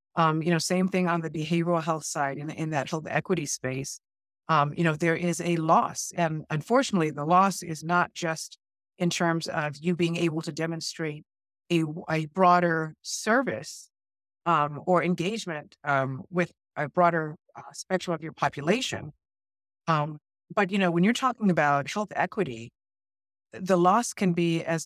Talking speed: 165 wpm